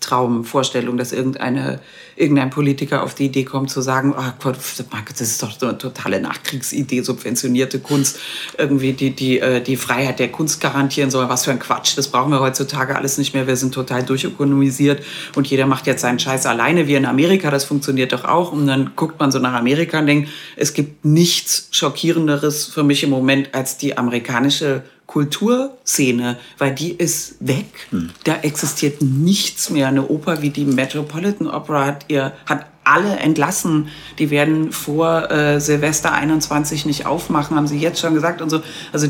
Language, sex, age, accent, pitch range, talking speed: German, female, 40-59, German, 135-155 Hz, 180 wpm